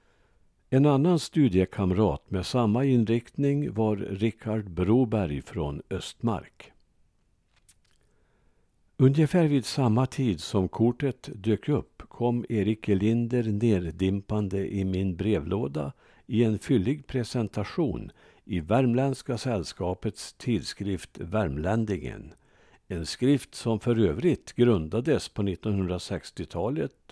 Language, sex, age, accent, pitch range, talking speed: Swedish, male, 60-79, Norwegian, 100-130 Hz, 95 wpm